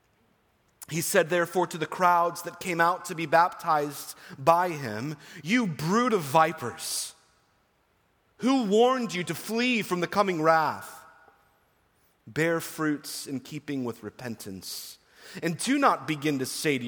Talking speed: 140 wpm